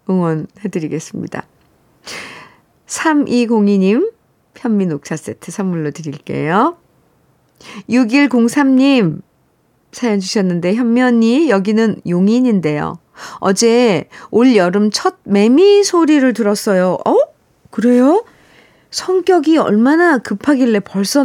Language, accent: Korean, native